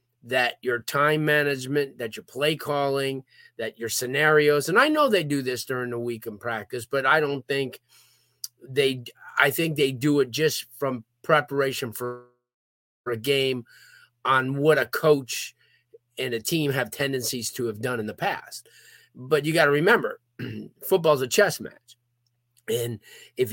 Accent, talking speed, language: American, 165 wpm, English